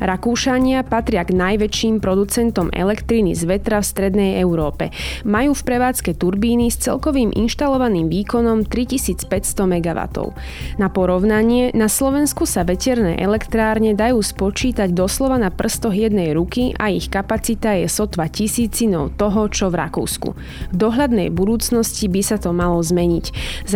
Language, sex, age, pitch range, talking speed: Slovak, female, 20-39, 185-230 Hz, 135 wpm